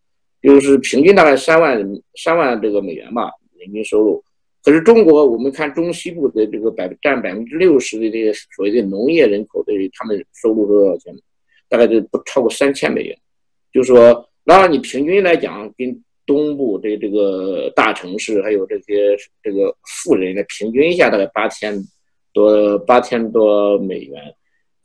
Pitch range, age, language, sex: 115-180 Hz, 50-69, Chinese, male